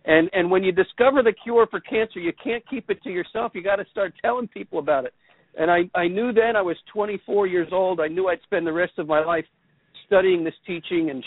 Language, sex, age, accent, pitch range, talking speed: English, male, 50-69, American, 155-190 Hz, 245 wpm